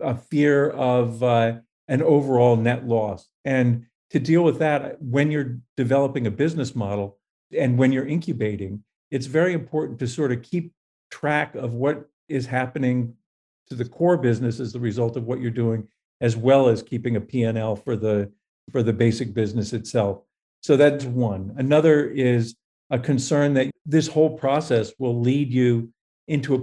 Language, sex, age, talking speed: English, male, 50-69, 170 wpm